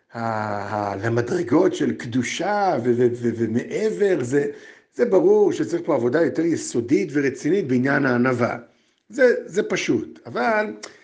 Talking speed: 125 wpm